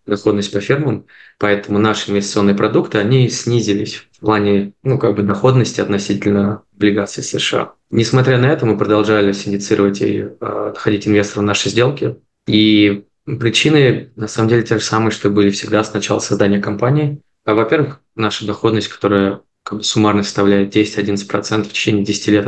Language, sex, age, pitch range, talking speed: Russian, male, 20-39, 100-110 Hz, 140 wpm